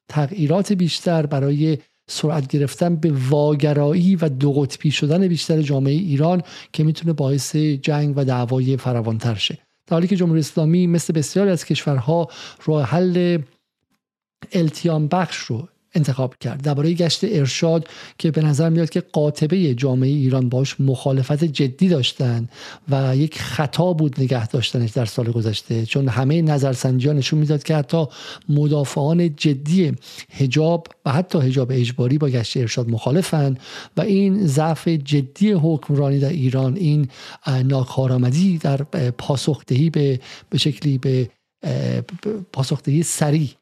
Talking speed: 130 wpm